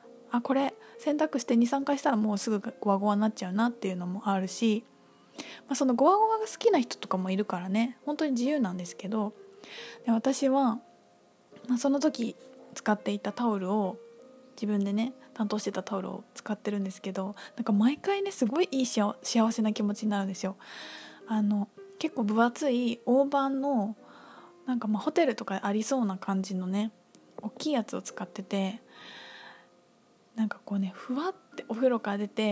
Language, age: Japanese, 20-39